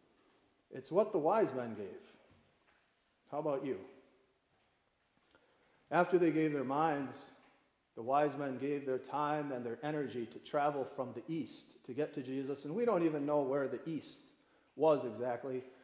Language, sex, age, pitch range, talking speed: English, male, 40-59, 130-155 Hz, 160 wpm